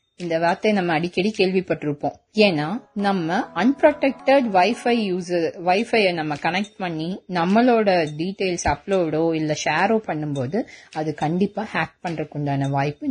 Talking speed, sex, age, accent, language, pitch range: 120 wpm, female, 20-39, native, Tamil, 160-225 Hz